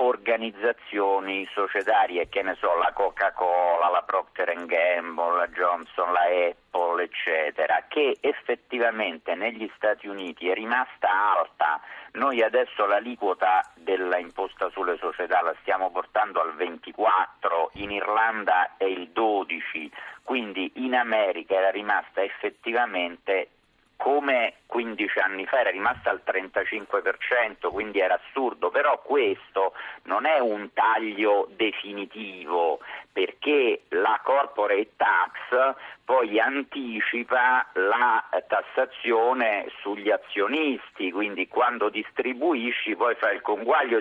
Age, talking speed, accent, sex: 50-69, 110 wpm, native, male